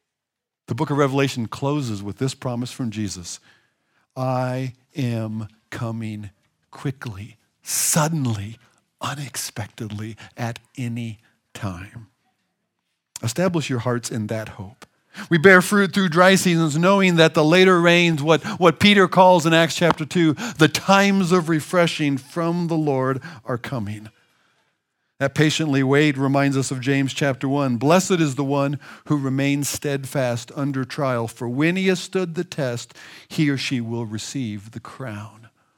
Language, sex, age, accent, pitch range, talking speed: English, male, 50-69, American, 115-165 Hz, 145 wpm